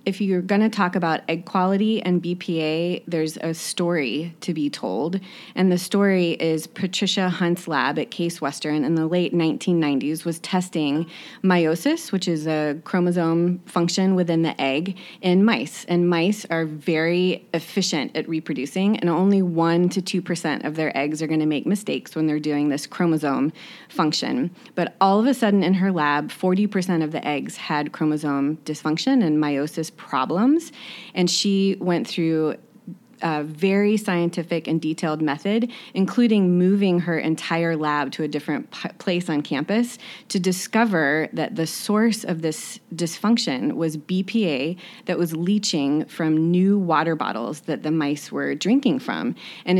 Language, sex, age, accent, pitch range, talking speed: English, female, 20-39, American, 155-195 Hz, 160 wpm